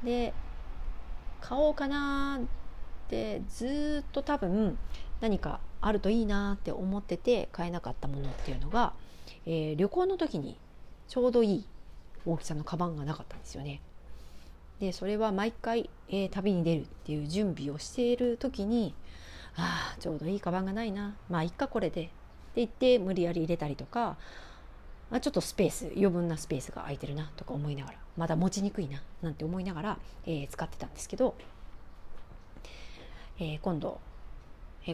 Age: 40-59